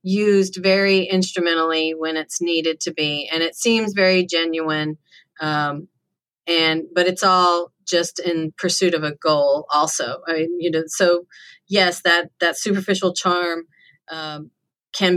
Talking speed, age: 145 wpm, 40-59